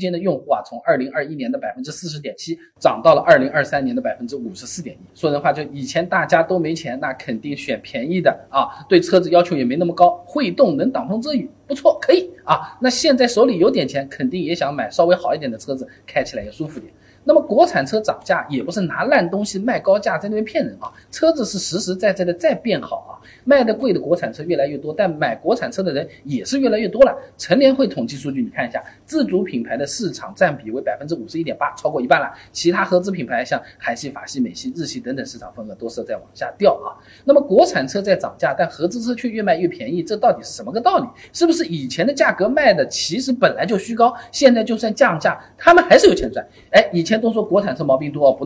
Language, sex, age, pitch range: Chinese, male, 20-39, 175-275 Hz